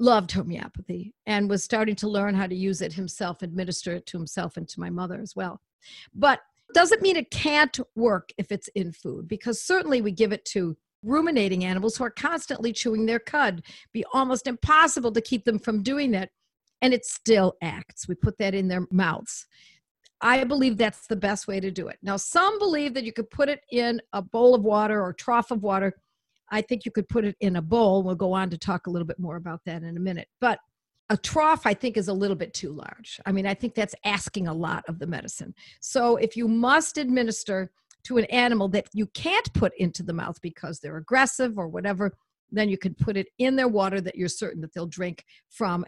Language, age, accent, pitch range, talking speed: English, 60-79, American, 185-240 Hz, 225 wpm